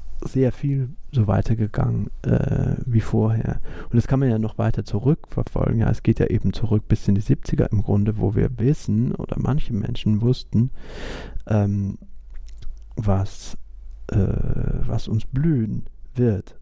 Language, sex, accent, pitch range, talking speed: German, male, German, 110-135 Hz, 140 wpm